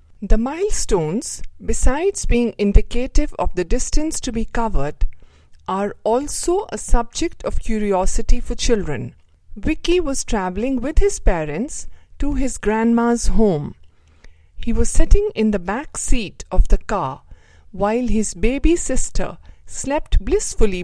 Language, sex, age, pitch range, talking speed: English, female, 50-69, 170-260 Hz, 130 wpm